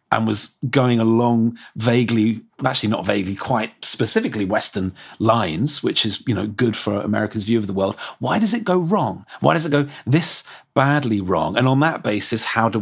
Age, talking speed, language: 40-59, 190 wpm, English